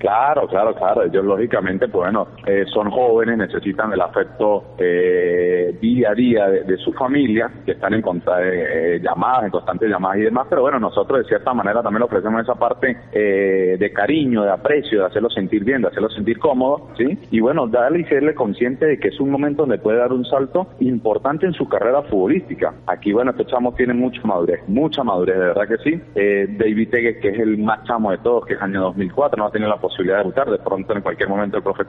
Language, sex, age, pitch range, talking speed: Spanish, male, 30-49, 100-145 Hz, 225 wpm